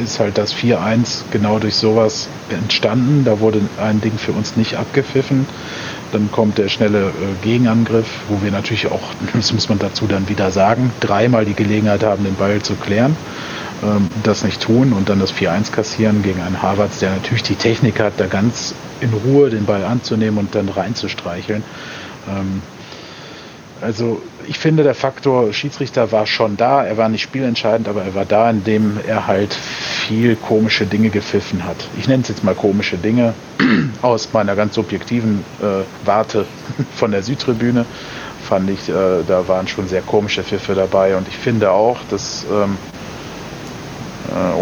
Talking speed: 165 wpm